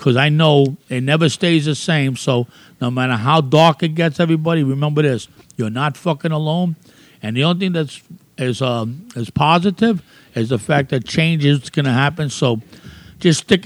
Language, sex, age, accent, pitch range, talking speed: English, male, 60-79, American, 120-160 Hz, 185 wpm